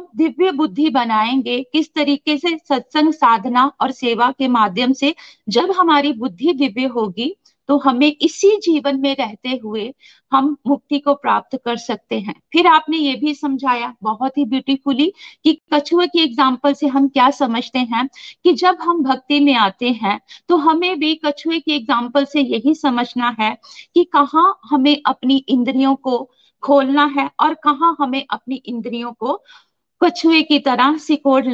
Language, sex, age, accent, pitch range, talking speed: Hindi, female, 50-69, native, 255-310 Hz, 160 wpm